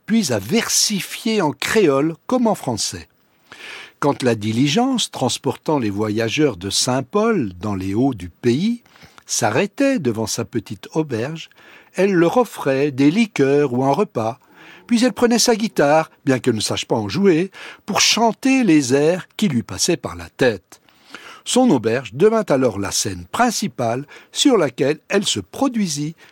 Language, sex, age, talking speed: French, male, 60-79, 155 wpm